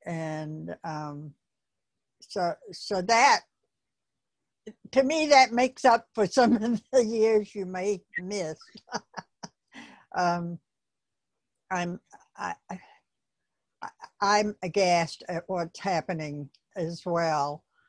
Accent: American